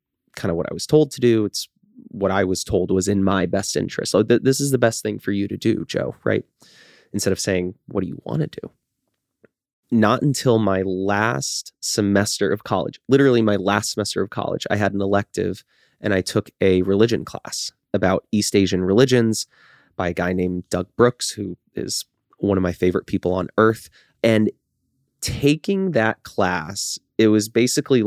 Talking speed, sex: 190 wpm, male